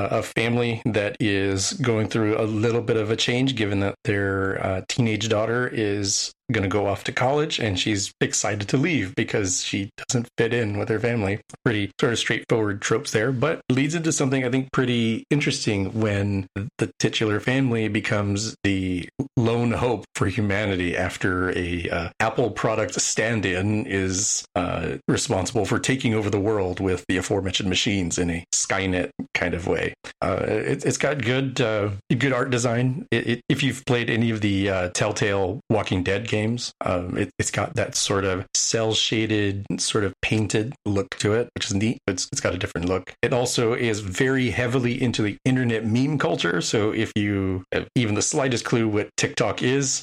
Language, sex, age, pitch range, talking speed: English, male, 30-49, 95-120 Hz, 185 wpm